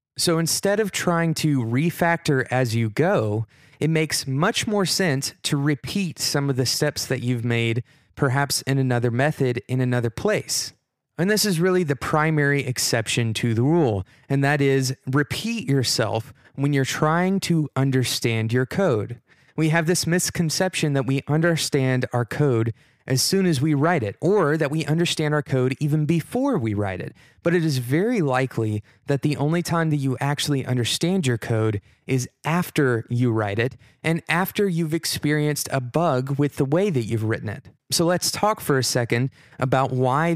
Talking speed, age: 175 wpm, 30-49